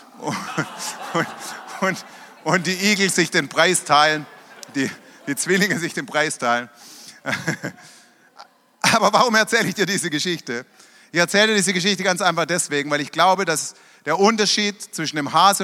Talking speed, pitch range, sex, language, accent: 155 wpm, 180-245 Hz, male, German, German